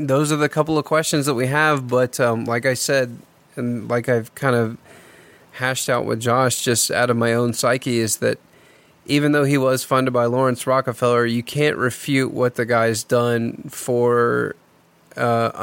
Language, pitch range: English, 120-135 Hz